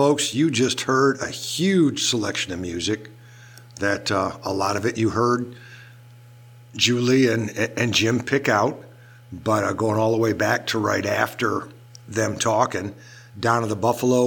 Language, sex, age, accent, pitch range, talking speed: English, male, 50-69, American, 110-130 Hz, 165 wpm